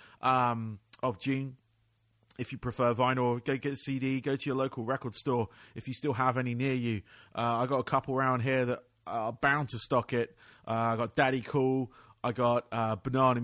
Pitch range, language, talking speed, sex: 115-140 Hz, English, 195 wpm, male